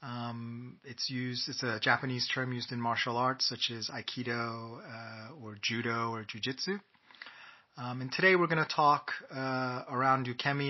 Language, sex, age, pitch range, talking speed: English, male, 30-49, 115-135 Hz, 170 wpm